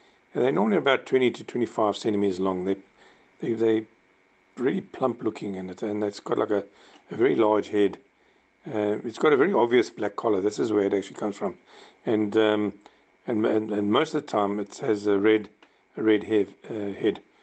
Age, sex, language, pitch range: 50-69, male, English, 100-110 Hz